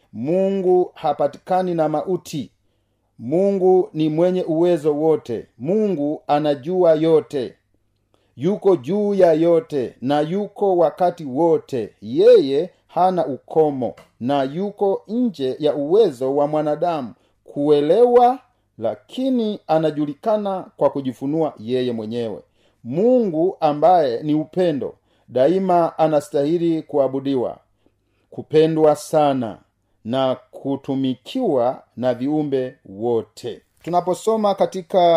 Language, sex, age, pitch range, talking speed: Swahili, male, 40-59, 135-185 Hz, 90 wpm